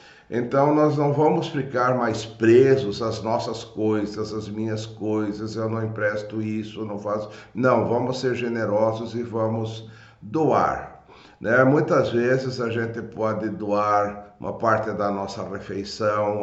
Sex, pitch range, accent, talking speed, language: male, 105-120 Hz, Brazilian, 140 wpm, Portuguese